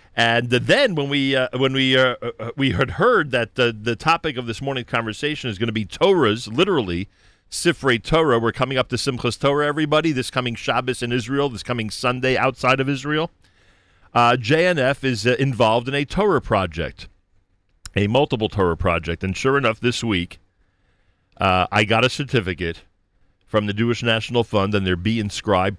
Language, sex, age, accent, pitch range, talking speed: English, male, 40-59, American, 95-125 Hz, 180 wpm